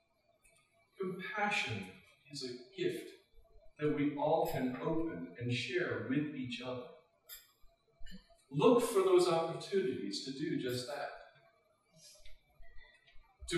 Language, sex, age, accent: English, male, 50-69, American